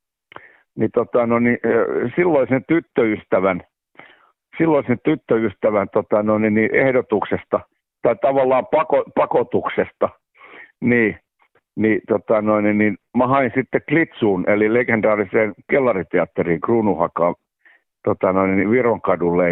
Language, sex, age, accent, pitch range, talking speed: Finnish, male, 60-79, native, 110-140 Hz, 110 wpm